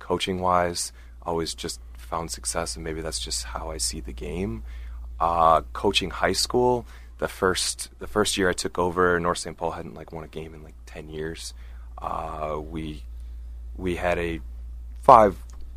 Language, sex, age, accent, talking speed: English, male, 20-39, American, 170 wpm